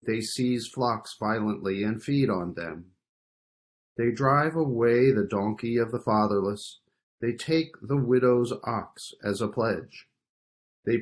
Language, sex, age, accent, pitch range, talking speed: English, male, 40-59, American, 105-130 Hz, 135 wpm